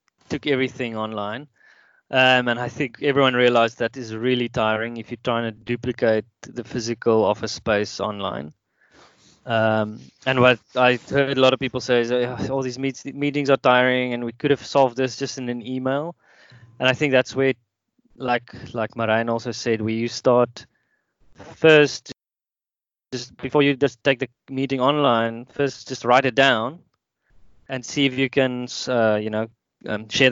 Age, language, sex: 20-39, English, male